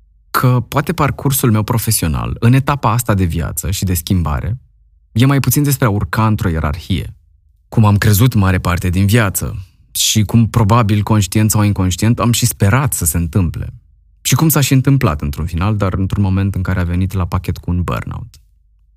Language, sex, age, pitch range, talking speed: Romanian, male, 20-39, 90-115 Hz, 185 wpm